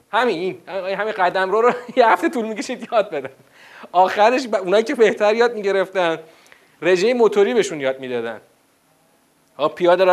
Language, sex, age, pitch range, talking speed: Persian, male, 40-59, 160-210 Hz, 140 wpm